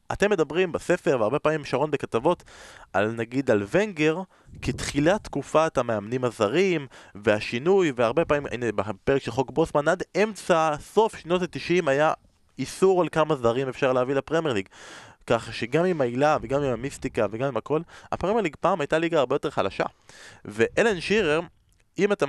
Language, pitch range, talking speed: Hebrew, 120-170 Hz, 155 wpm